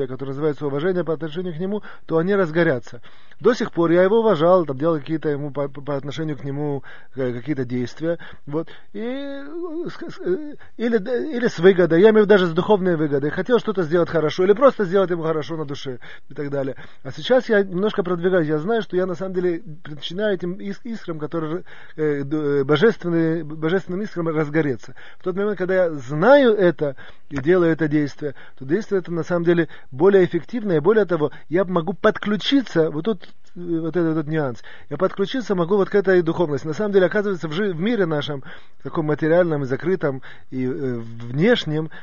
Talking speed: 180 wpm